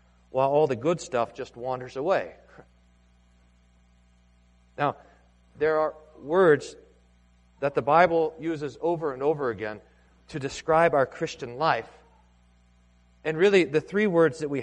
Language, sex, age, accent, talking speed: English, male, 40-59, American, 130 wpm